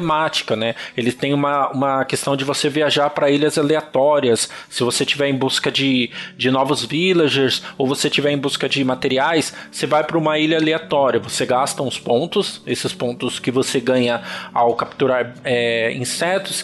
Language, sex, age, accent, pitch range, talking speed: Portuguese, male, 20-39, Brazilian, 130-160 Hz, 165 wpm